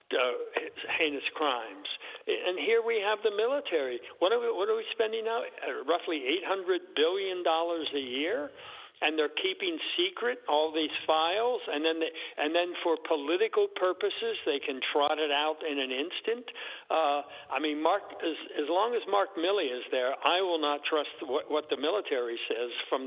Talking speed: 180 wpm